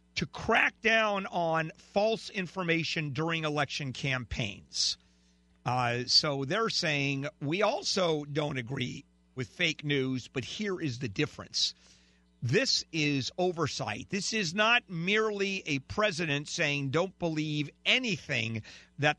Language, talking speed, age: English, 120 wpm, 50-69